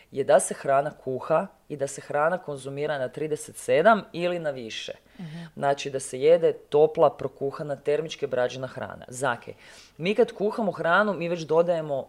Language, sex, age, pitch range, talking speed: Croatian, female, 30-49, 145-205 Hz, 160 wpm